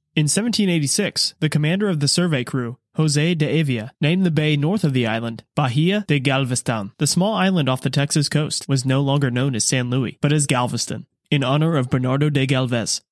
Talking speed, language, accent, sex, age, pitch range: 200 wpm, English, American, male, 20-39, 130-160 Hz